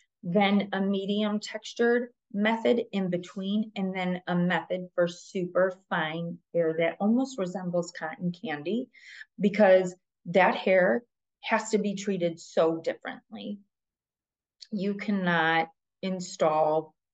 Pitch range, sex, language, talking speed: 170-200 Hz, female, English, 110 wpm